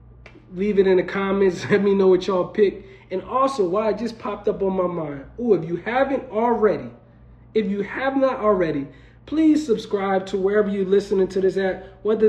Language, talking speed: English, 200 wpm